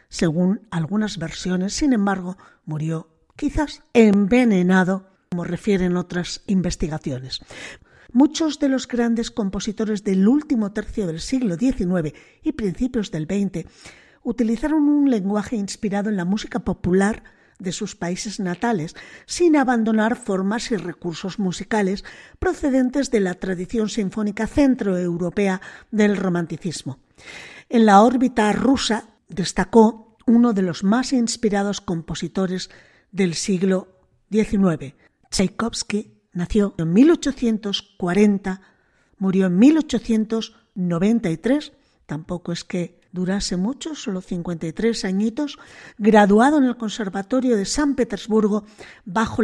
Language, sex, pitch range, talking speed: Spanish, female, 185-235 Hz, 110 wpm